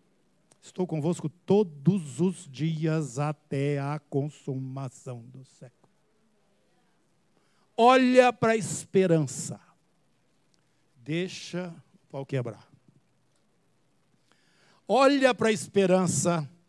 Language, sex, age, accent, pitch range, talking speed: Portuguese, male, 60-79, Brazilian, 150-200 Hz, 80 wpm